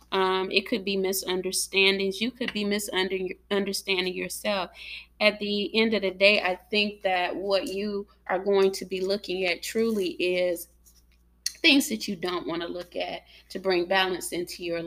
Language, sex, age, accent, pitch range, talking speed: English, female, 20-39, American, 180-215 Hz, 170 wpm